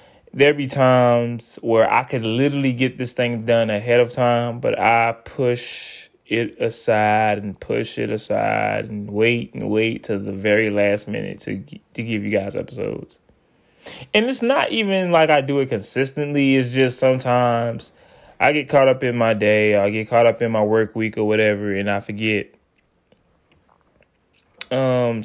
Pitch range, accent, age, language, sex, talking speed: 110-130 Hz, American, 10-29, English, male, 170 wpm